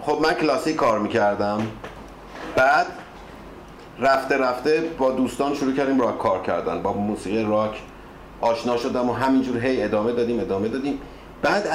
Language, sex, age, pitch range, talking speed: Persian, male, 50-69, 105-140 Hz, 145 wpm